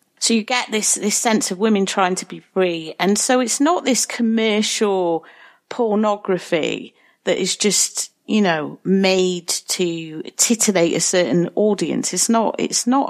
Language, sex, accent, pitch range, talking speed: English, female, British, 175-235 Hz, 155 wpm